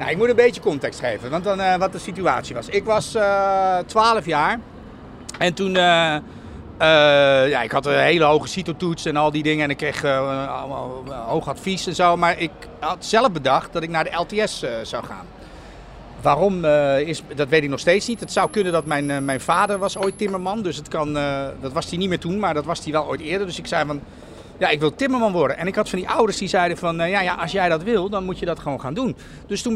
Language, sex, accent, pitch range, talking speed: Dutch, male, Dutch, 150-195 Hz, 255 wpm